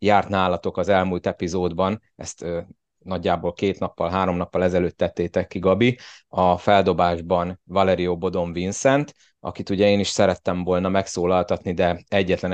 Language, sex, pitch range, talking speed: Hungarian, male, 90-105 Hz, 145 wpm